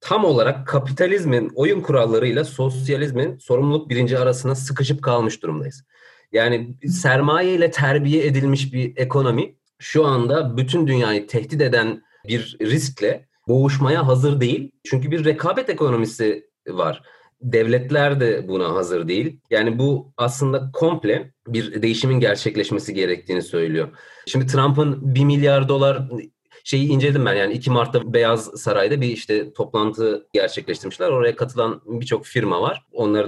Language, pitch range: Turkish, 120-150 Hz